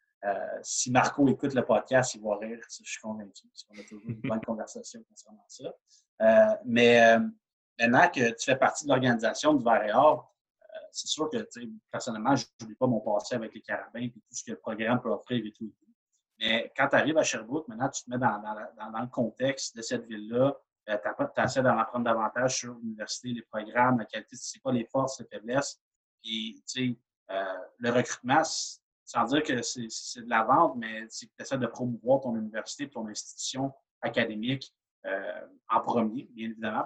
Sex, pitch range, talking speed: male, 110-135 Hz, 205 wpm